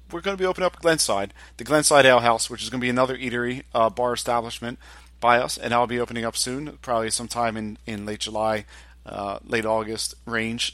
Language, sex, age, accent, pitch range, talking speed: English, male, 40-59, American, 115-140 Hz, 220 wpm